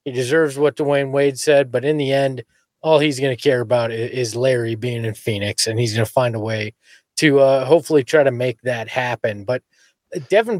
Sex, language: male, English